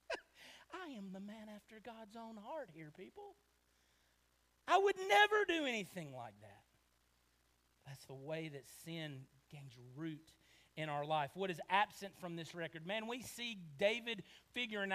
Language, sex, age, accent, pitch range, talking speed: English, male, 40-59, American, 130-200 Hz, 155 wpm